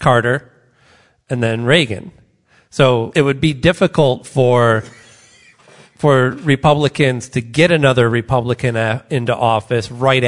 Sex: male